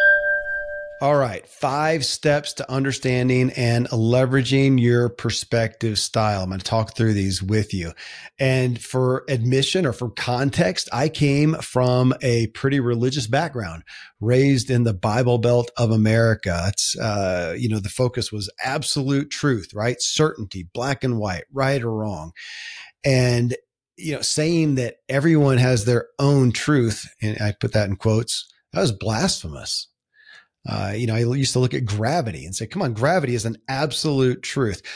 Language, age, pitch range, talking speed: English, 40-59, 110-140 Hz, 160 wpm